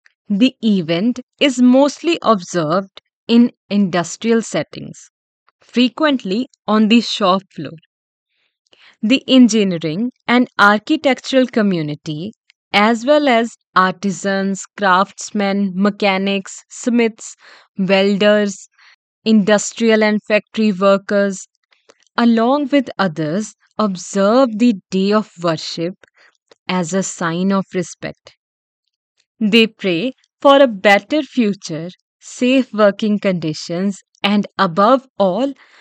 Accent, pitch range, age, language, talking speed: Indian, 185-235 Hz, 20-39, English, 90 wpm